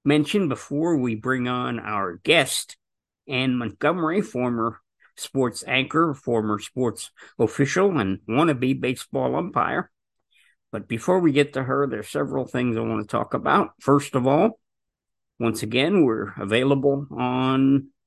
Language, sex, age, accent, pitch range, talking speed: English, male, 50-69, American, 115-150 Hz, 135 wpm